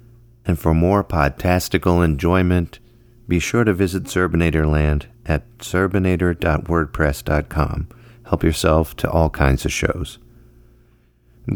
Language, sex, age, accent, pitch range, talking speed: English, male, 40-59, American, 75-95 Hz, 105 wpm